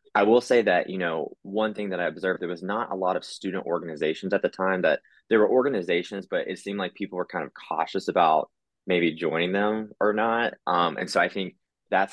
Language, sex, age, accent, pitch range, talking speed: English, male, 20-39, American, 85-100 Hz, 235 wpm